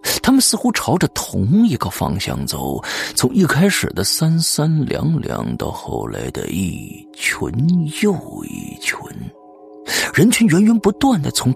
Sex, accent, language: male, native, Chinese